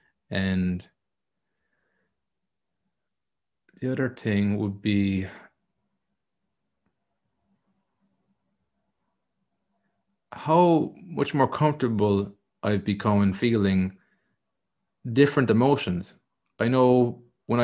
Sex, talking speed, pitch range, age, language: male, 65 wpm, 100-120 Hz, 30-49, English